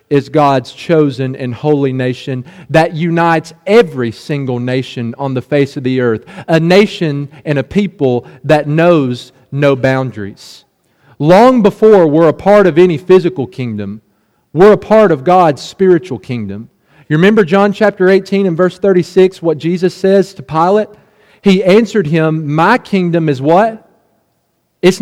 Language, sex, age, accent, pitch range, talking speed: English, male, 40-59, American, 155-215 Hz, 150 wpm